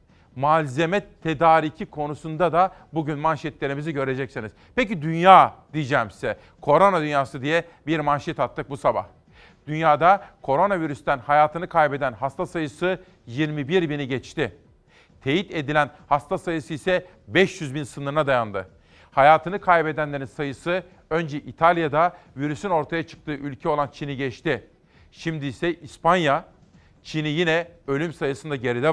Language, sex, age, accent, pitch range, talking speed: Turkish, male, 40-59, native, 145-175 Hz, 120 wpm